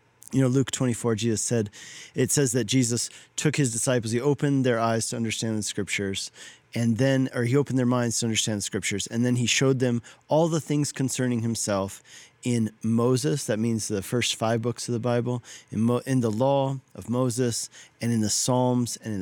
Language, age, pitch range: English, 40-59, 105-130 Hz